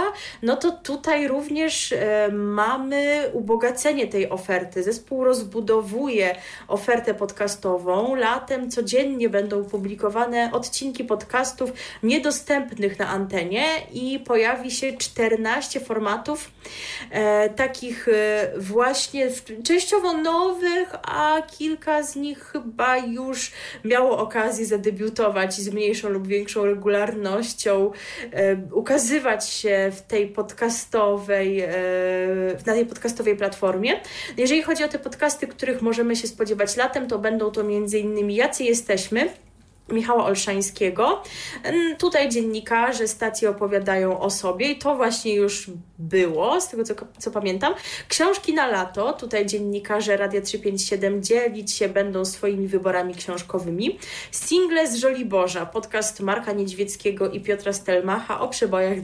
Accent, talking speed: native, 115 wpm